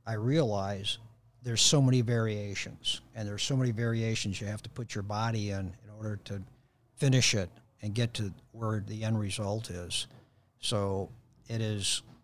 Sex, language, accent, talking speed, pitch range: male, English, American, 165 wpm, 105-125 Hz